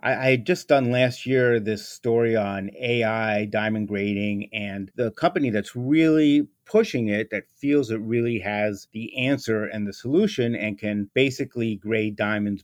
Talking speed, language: 160 wpm, English